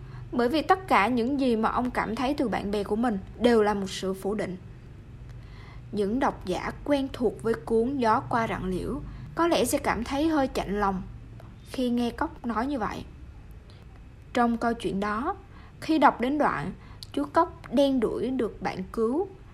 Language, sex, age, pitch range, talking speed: Vietnamese, female, 20-39, 205-280 Hz, 185 wpm